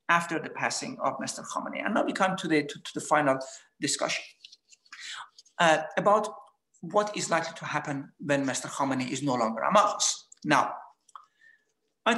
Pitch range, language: 155-215 Hz, English